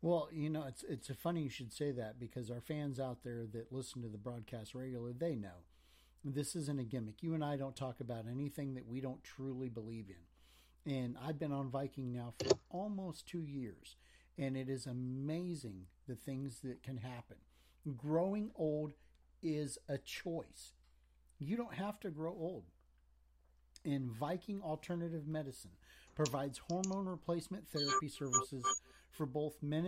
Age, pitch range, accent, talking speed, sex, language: 50-69, 120-165 Hz, American, 165 wpm, male, English